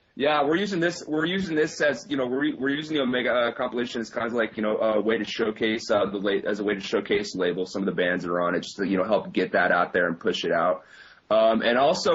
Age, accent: 30-49, American